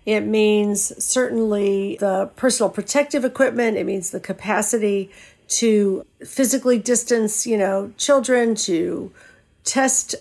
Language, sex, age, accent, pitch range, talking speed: English, female, 50-69, American, 195-240 Hz, 110 wpm